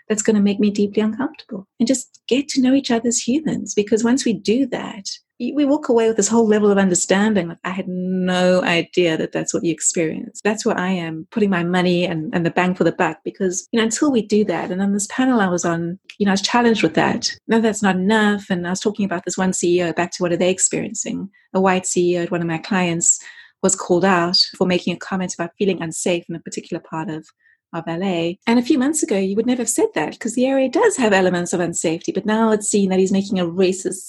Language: English